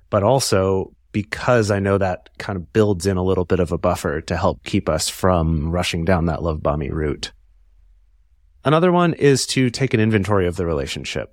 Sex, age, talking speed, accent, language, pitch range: male, 30-49, 195 wpm, American, English, 90-120 Hz